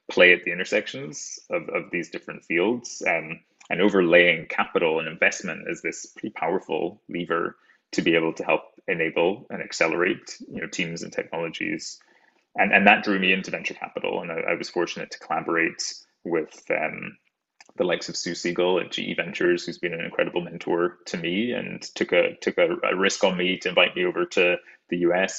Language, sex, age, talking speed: English, male, 20-39, 185 wpm